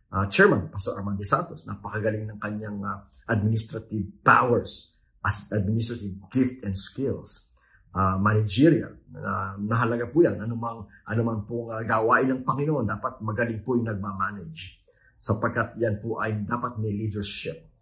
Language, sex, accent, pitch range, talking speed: English, male, Filipino, 100-125 Hz, 135 wpm